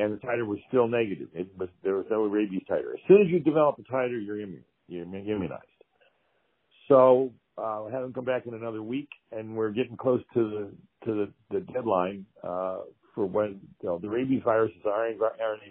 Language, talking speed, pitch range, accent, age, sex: English, 205 wpm, 105-125 Hz, American, 60-79, male